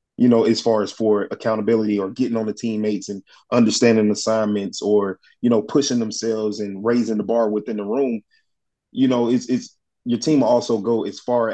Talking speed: 200 wpm